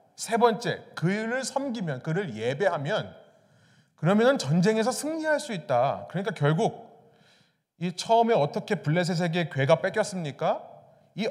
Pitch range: 155-210 Hz